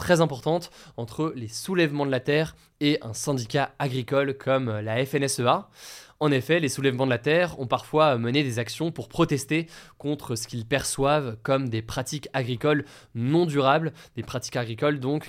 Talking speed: 170 wpm